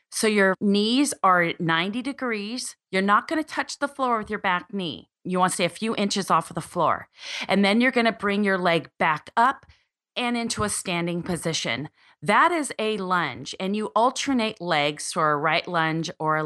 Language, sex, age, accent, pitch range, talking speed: English, female, 30-49, American, 170-230 Hz, 210 wpm